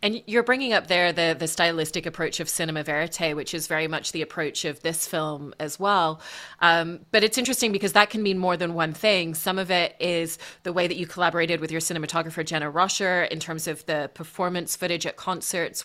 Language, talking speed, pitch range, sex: English, 215 wpm, 160-180 Hz, female